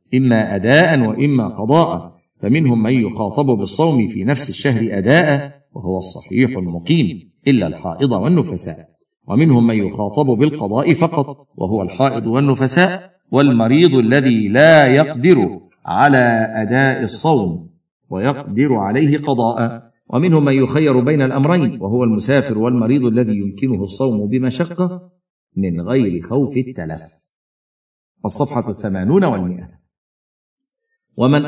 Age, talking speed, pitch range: 50-69, 105 wpm, 110-145 Hz